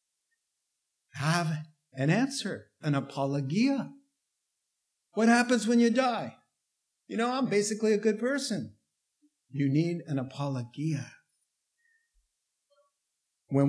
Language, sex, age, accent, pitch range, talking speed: English, male, 50-69, American, 120-160 Hz, 95 wpm